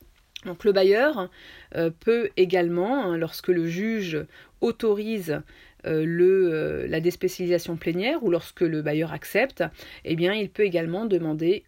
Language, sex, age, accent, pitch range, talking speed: French, female, 40-59, French, 170-220 Hz, 125 wpm